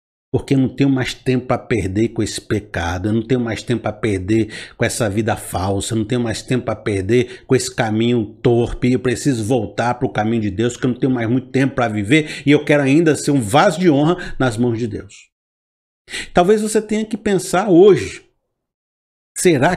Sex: male